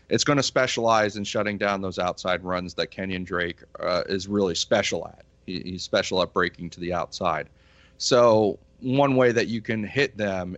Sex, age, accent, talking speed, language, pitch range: male, 30-49, American, 195 wpm, English, 95-110 Hz